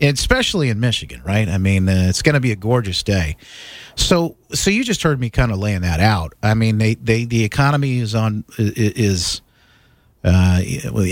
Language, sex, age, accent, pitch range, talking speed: English, male, 40-59, American, 110-145 Hz, 190 wpm